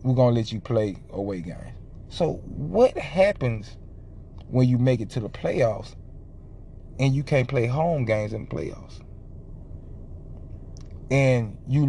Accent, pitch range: American, 95-140 Hz